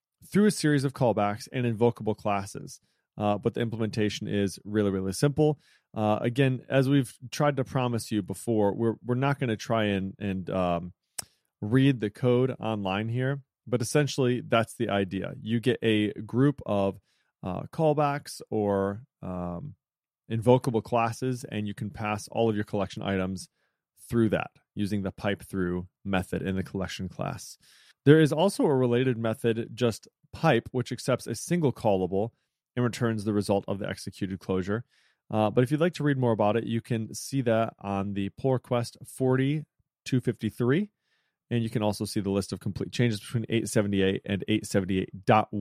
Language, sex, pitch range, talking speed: English, male, 100-130 Hz, 165 wpm